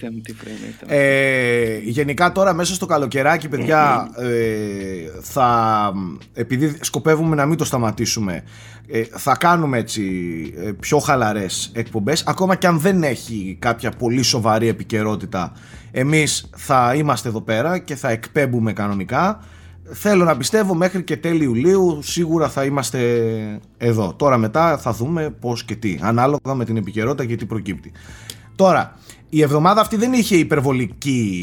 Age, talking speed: 30-49, 135 wpm